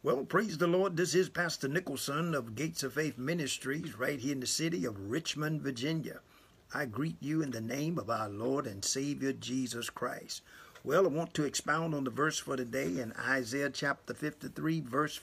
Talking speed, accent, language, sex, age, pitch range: 195 wpm, American, English, male, 50-69, 130-155 Hz